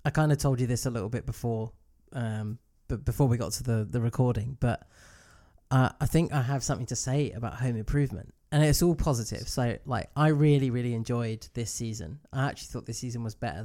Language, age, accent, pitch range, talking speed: English, 20-39, British, 115-135 Hz, 220 wpm